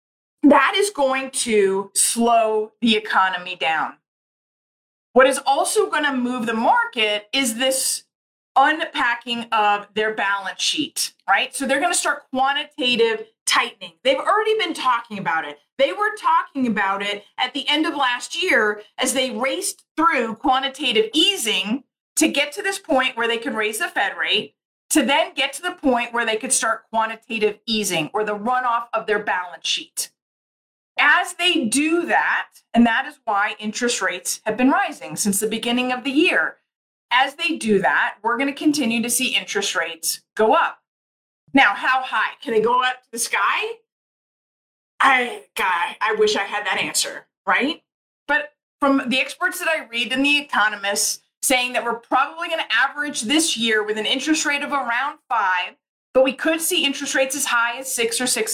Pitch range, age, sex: 220-295 Hz, 40-59, female